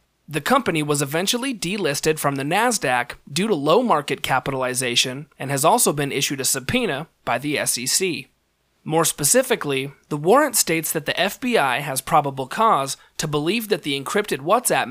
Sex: male